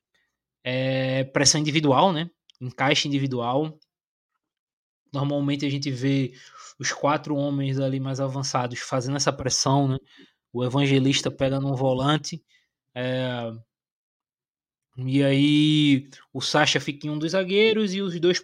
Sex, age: male, 20-39